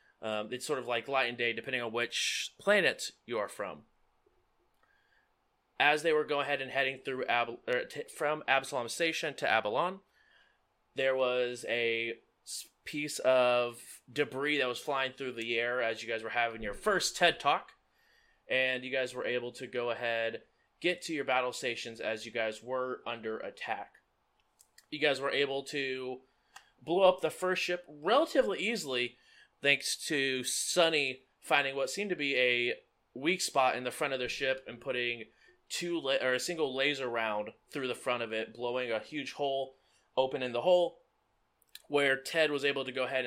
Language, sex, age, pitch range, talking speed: English, male, 20-39, 120-150 Hz, 180 wpm